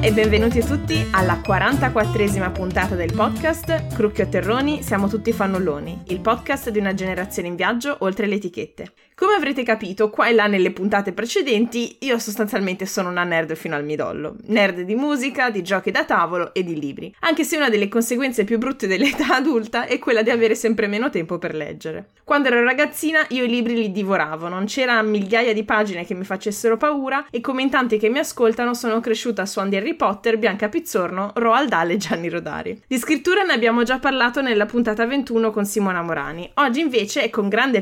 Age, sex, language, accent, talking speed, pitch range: 20-39, female, Italian, native, 195 wpm, 195-255 Hz